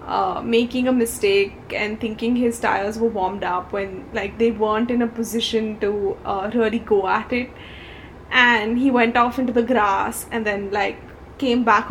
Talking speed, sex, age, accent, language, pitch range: 175 wpm, female, 10-29, Indian, English, 220-255 Hz